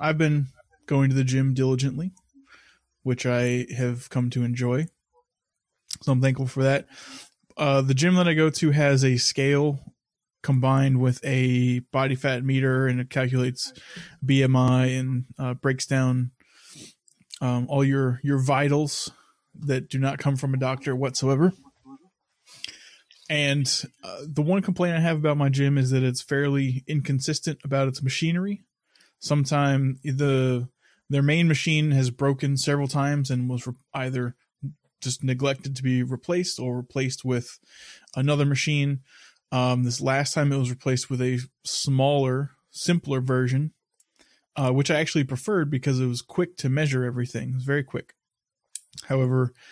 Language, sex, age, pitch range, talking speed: English, male, 20-39, 130-145 Hz, 150 wpm